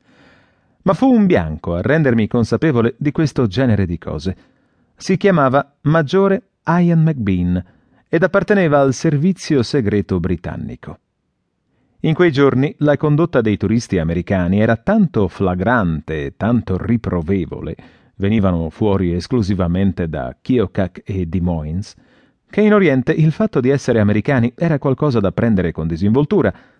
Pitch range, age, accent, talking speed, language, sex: 95-150 Hz, 30-49, Italian, 130 wpm, English, male